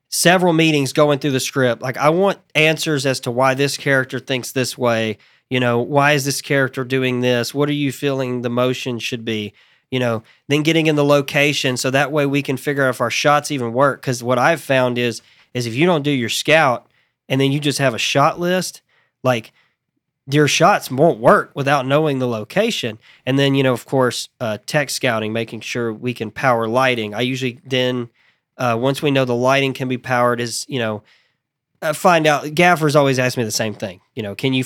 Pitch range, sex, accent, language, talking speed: 120-145 Hz, male, American, English, 215 wpm